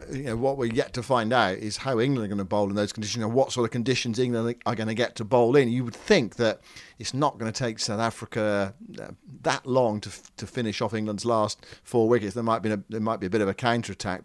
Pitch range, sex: 105-125 Hz, male